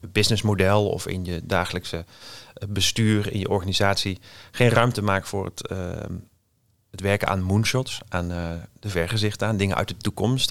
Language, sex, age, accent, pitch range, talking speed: English, male, 40-59, Dutch, 95-110 Hz, 160 wpm